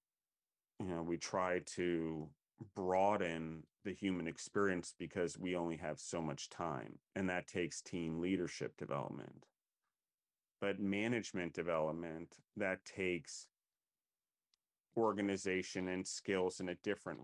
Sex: male